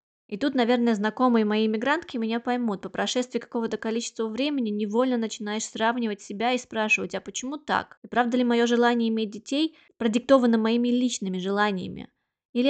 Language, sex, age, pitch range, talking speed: Russian, female, 20-39, 205-240 Hz, 160 wpm